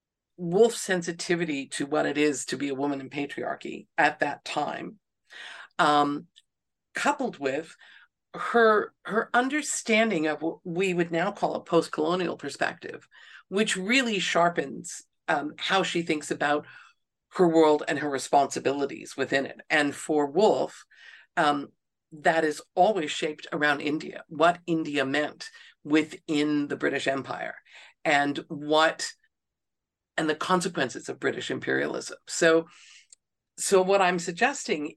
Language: English